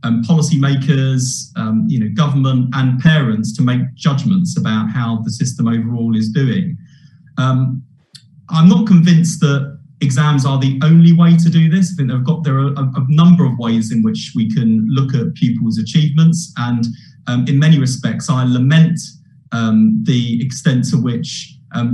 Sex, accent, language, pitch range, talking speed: male, British, English, 115-150 Hz, 170 wpm